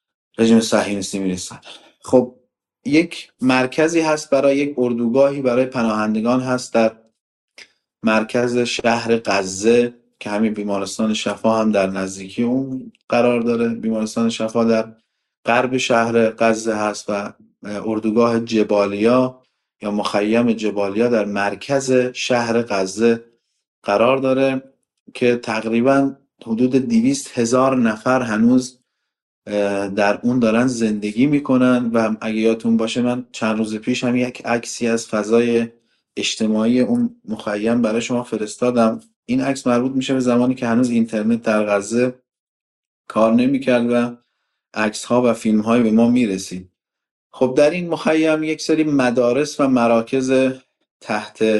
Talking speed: 130 wpm